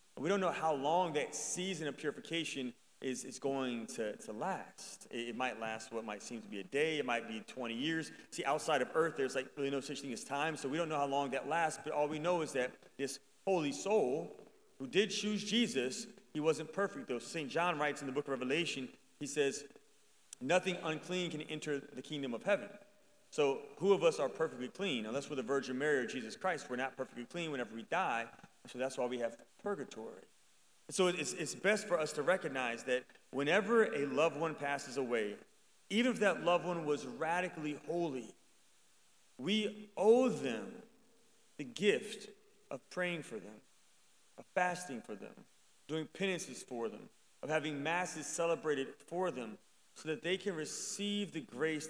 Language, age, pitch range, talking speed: English, 30-49, 135-190 Hz, 195 wpm